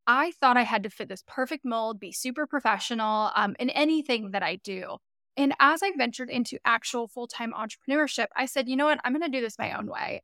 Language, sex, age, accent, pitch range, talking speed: English, female, 10-29, American, 220-285 Hz, 230 wpm